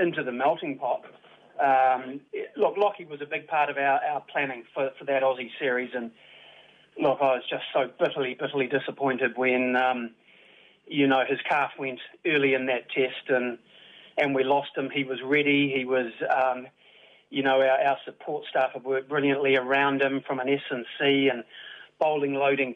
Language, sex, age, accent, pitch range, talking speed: English, male, 40-59, Australian, 135-150 Hz, 185 wpm